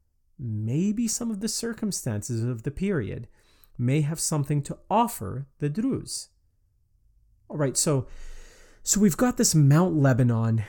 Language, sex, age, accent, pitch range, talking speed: English, male, 30-49, American, 105-140 Hz, 130 wpm